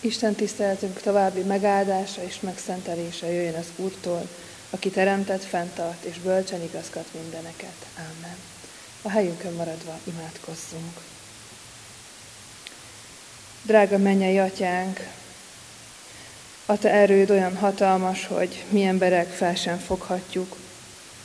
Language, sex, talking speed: Hungarian, female, 100 wpm